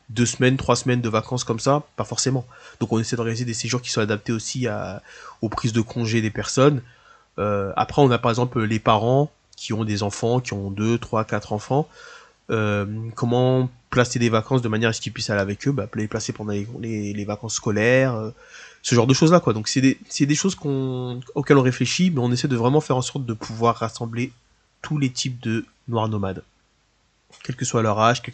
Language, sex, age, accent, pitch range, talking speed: French, male, 20-39, French, 110-130 Hz, 220 wpm